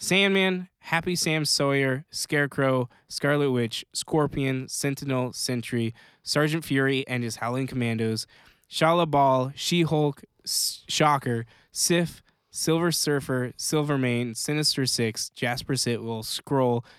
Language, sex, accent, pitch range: English, male, American, 120-150 Hz